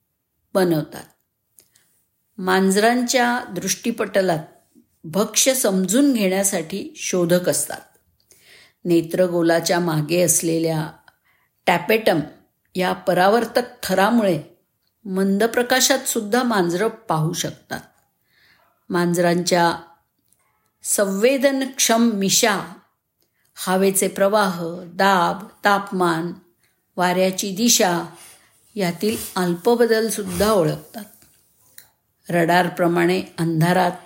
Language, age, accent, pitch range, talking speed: Marathi, 50-69, native, 175-225 Hz, 60 wpm